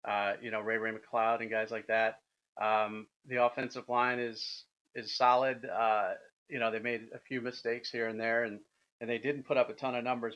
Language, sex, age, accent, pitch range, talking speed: English, male, 40-59, American, 110-125 Hz, 220 wpm